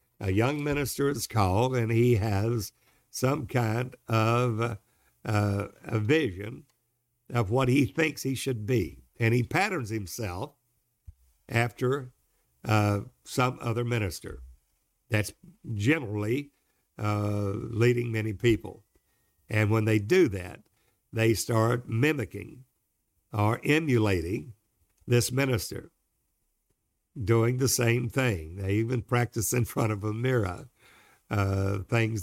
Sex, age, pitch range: male, 60-79, 100-125 Hz